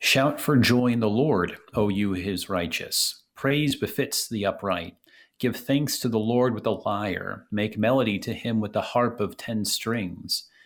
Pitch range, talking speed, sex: 100-125 Hz, 180 wpm, male